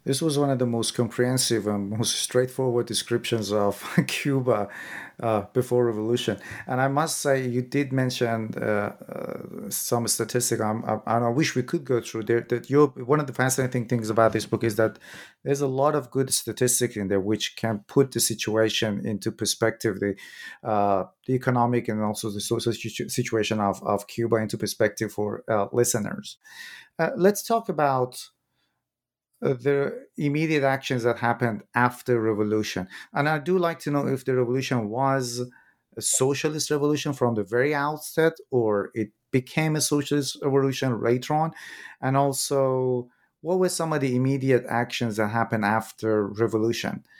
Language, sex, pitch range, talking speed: English, male, 110-135 Hz, 165 wpm